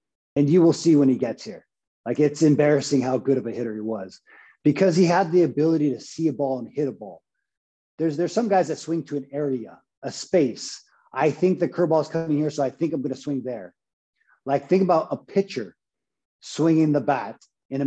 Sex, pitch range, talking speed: male, 130-160 Hz, 225 wpm